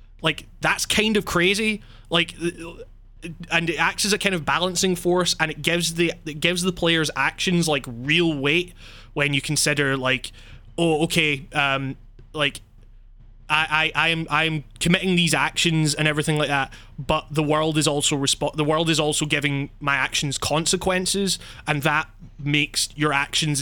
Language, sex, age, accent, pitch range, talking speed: English, male, 20-39, British, 135-165 Hz, 170 wpm